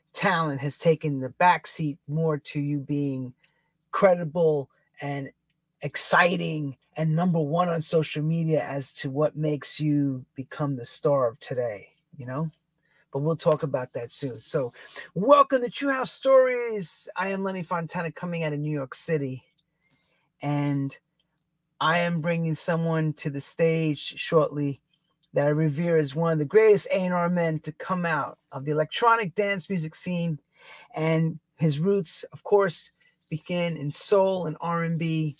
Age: 30-49